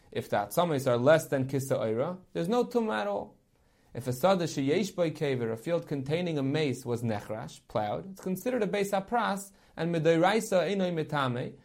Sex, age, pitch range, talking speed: male, 30-49, 135-195 Hz, 180 wpm